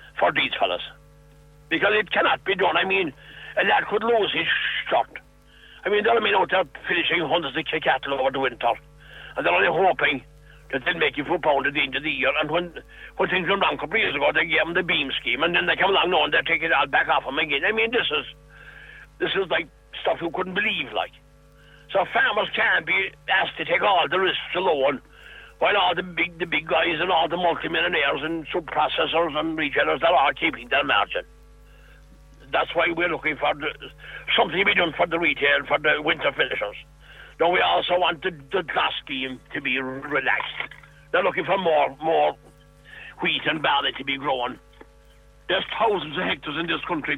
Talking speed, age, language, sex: 210 wpm, 60-79, English, male